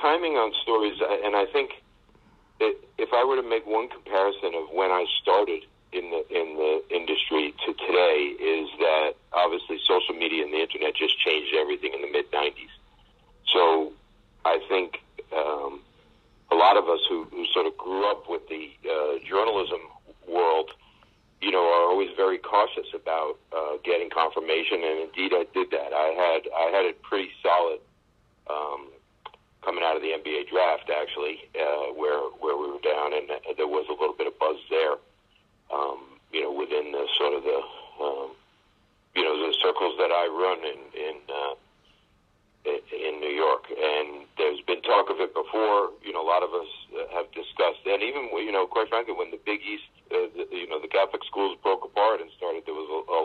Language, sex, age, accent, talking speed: English, male, 50-69, American, 190 wpm